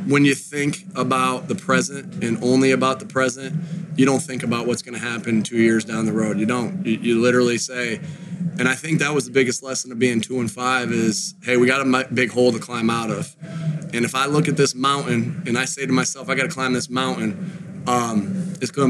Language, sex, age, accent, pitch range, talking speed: English, male, 20-39, American, 125-145 Hz, 240 wpm